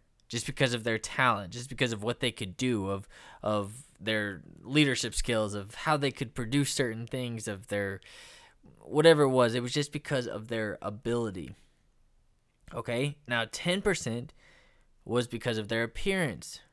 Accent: American